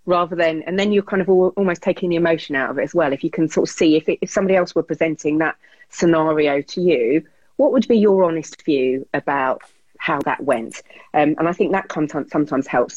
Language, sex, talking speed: English, female, 240 wpm